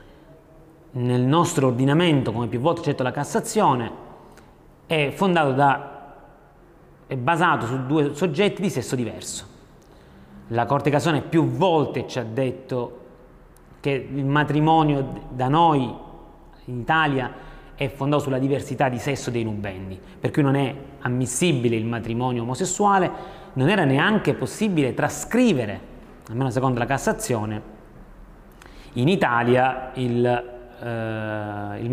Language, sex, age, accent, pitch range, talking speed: Italian, male, 30-49, native, 120-160 Hz, 120 wpm